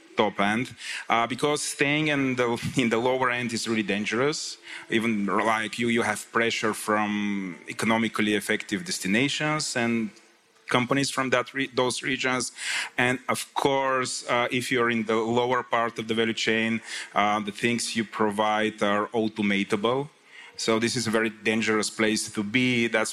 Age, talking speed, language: 30-49, 160 wpm, Bulgarian